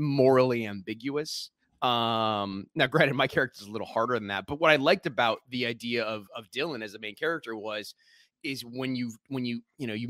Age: 30-49